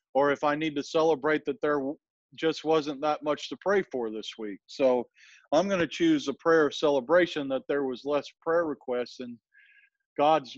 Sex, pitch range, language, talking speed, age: male, 135-165 Hz, English, 185 wpm, 40-59